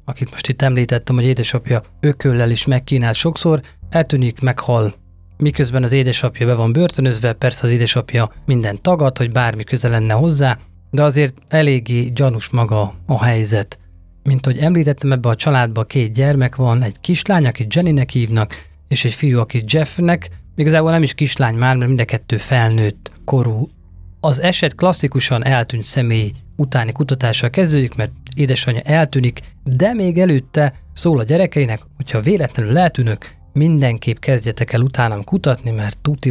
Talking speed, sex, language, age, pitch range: 150 wpm, male, Hungarian, 30-49, 115-145 Hz